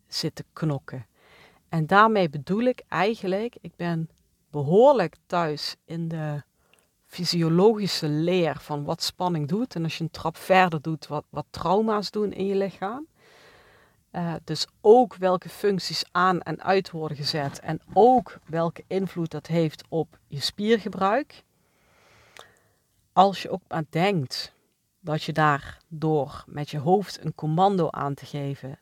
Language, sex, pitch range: Dutch, female, 155-195 Hz